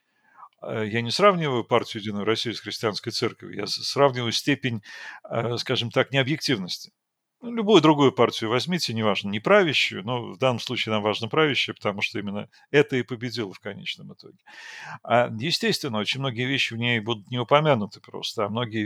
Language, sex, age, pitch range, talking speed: Russian, male, 50-69, 115-145 Hz, 160 wpm